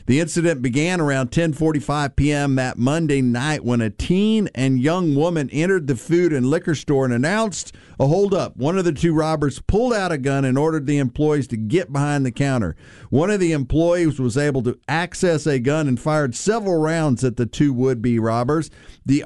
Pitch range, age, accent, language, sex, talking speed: 130-165 Hz, 50-69, American, English, male, 200 wpm